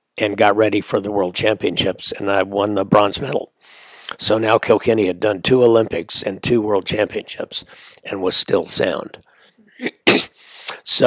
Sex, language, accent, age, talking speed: male, English, American, 60-79, 155 wpm